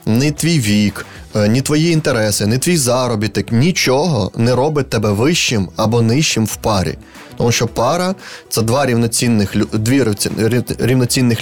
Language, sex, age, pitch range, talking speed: Ukrainian, male, 20-39, 110-140 Hz, 135 wpm